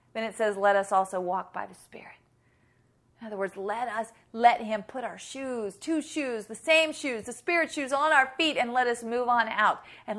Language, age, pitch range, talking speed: English, 40-59, 205-295 Hz, 225 wpm